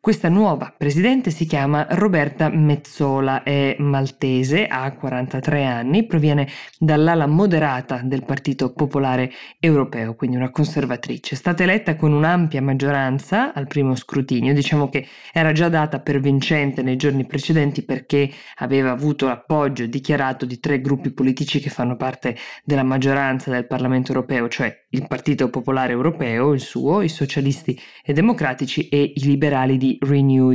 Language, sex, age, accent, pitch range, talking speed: Italian, female, 20-39, native, 135-155 Hz, 145 wpm